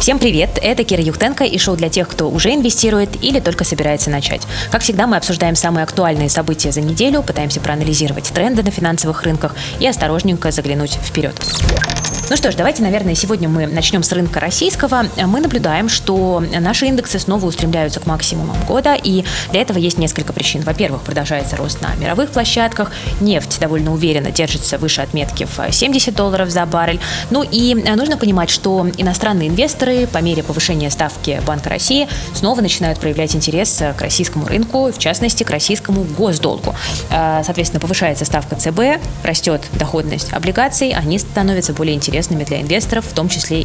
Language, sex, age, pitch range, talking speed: Russian, female, 20-39, 155-205 Hz, 165 wpm